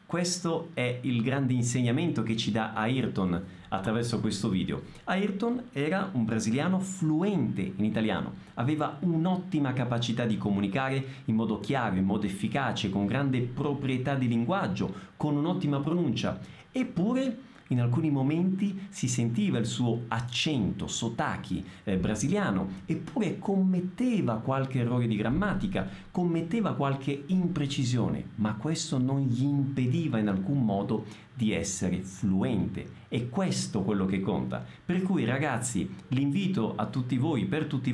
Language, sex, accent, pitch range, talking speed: Italian, male, native, 110-155 Hz, 130 wpm